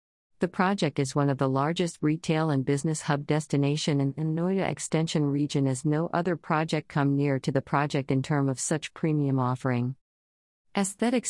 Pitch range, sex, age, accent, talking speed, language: 130-160 Hz, female, 50-69, American, 170 wpm, Hindi